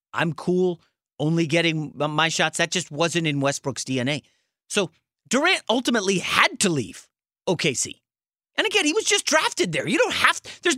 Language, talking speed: English, 175 wpm